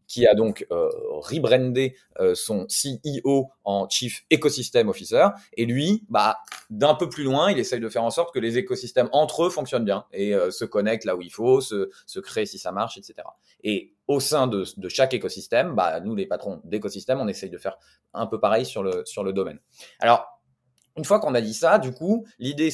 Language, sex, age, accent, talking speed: French, male, 30-49, French, 215 wpm